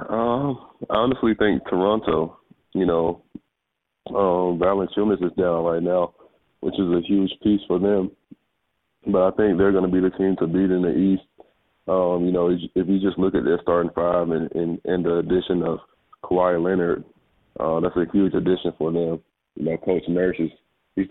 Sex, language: male, English